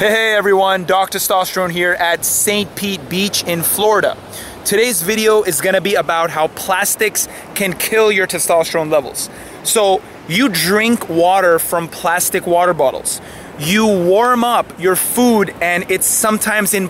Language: English